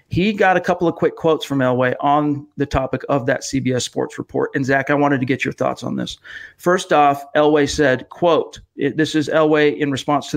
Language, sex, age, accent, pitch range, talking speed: English, male, 40-59, American, 130-155 Hz, 225 wpm